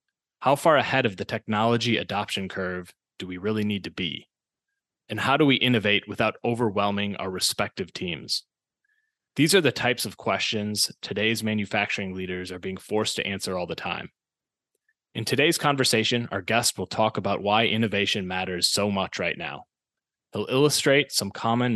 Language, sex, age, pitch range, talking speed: English, male, 20-39, 100-120 Hz, 165 wpm